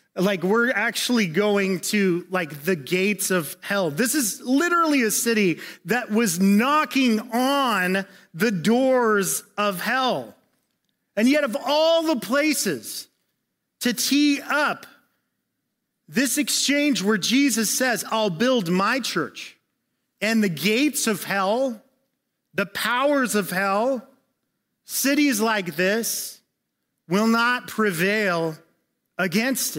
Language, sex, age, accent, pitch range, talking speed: English, male, 30-49, American, 175-245 Hz, 115 wpm